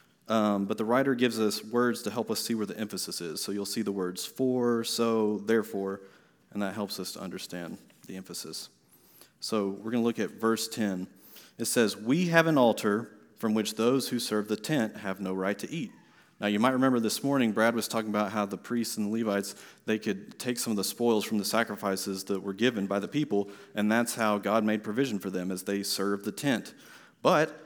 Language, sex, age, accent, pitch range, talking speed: English, male, 30-49, American, 100-120 Hz, 225 wpm